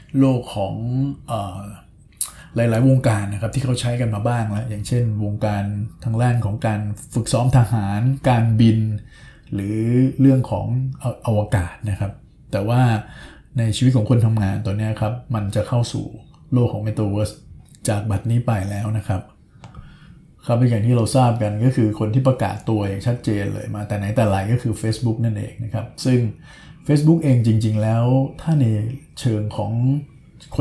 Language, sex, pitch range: Thai, male, 105-125 Hz